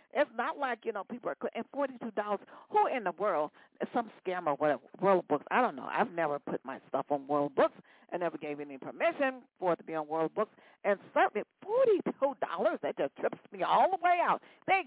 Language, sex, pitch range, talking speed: English, female, 170-245 Hz, 215 wpm